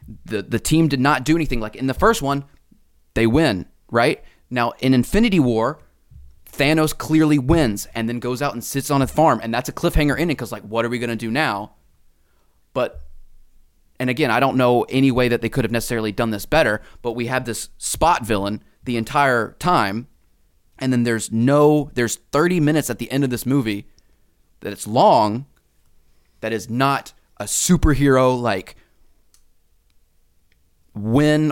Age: 20-39